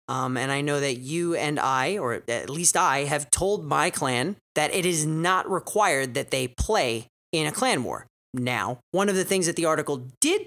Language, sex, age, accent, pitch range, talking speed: English, male, 30-49, American, 135-205 Hz, 210 wpm